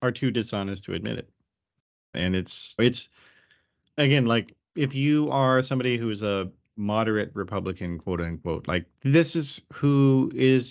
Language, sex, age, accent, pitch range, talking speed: English, male, 30-49, American, 90-120 Hz, 150 wpm